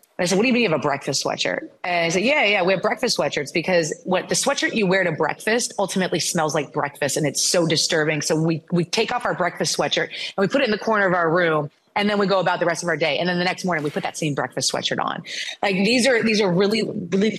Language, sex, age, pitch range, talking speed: English, female, 30-49, 155-185 Hz, 285 wpm